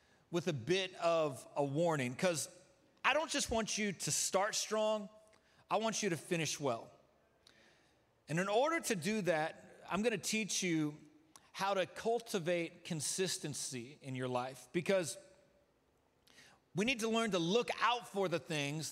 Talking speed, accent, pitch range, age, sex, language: 155 wpm, American, 145-190 Hz, 40-59, male, English